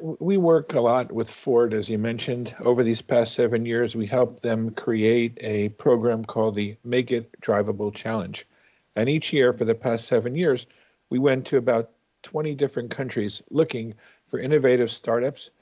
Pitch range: 115-140 Hz